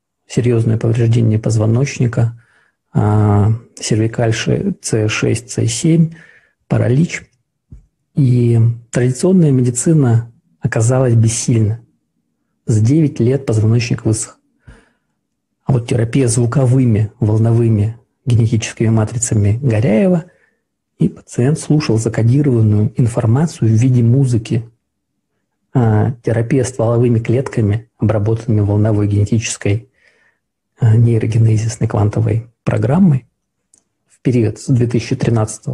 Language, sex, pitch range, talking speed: Russian, male, 110-130 Hz, 80 wpm